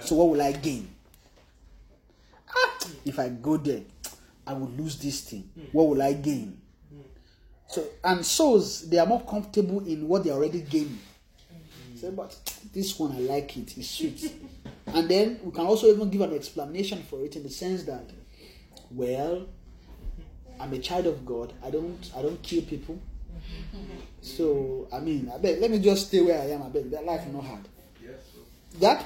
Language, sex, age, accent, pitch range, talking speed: English, male, 30-49, Nigerian, 140-200 Hz, 180 wpm